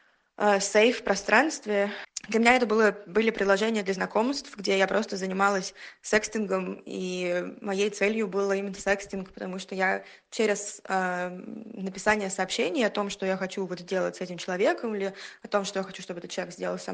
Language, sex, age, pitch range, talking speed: Russian, female, 20-39, 190-220 Hz, 175 wpm